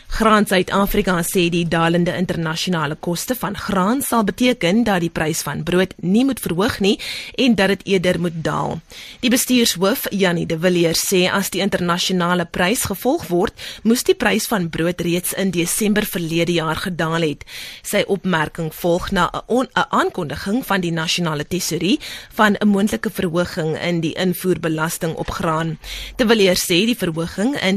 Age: 20-39